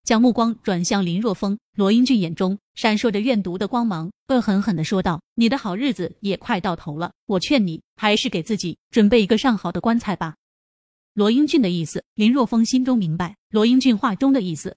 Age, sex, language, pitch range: 20-39, female, Chinese, 190-245 Hz